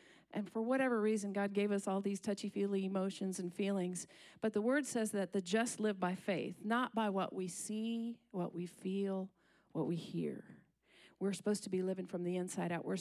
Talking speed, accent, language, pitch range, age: 205 wpm, American, English, 185-210 Hz, 40-59